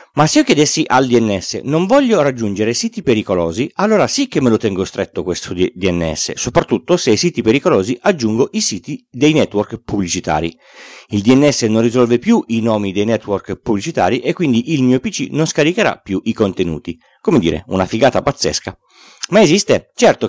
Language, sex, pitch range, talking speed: Italian, male, 105-150 Hz, 175 wpm